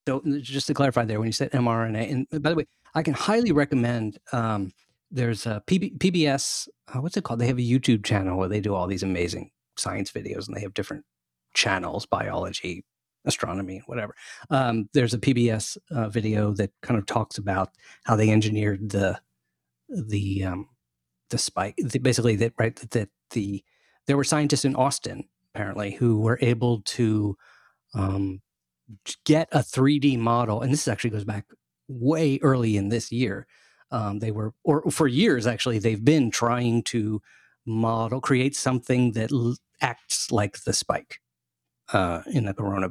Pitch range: 105-135 Hz